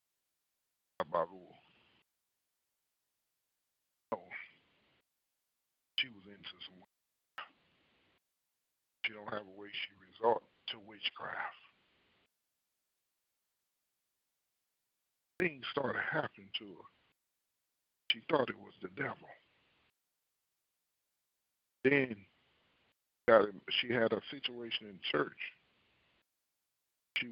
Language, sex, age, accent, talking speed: English, male, 60-79, American, 80 wpm